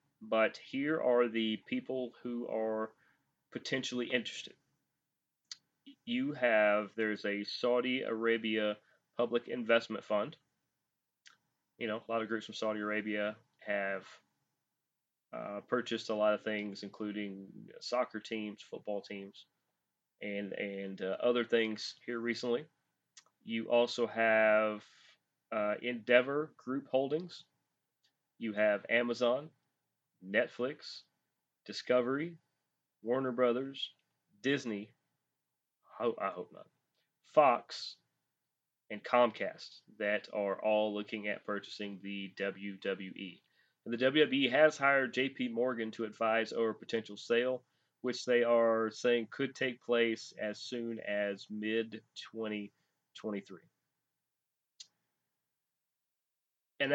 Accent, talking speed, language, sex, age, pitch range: American, 105 wpm, English, male, 30-49, 105-125 Hz